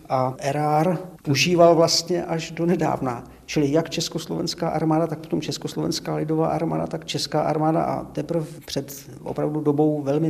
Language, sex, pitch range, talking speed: Czech, male, 120-140 Hz, 145 wpm